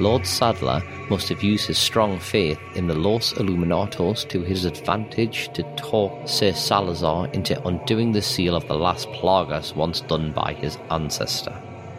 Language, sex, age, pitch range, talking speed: English, male, 40-59, 85-105 Hz, 160 wpm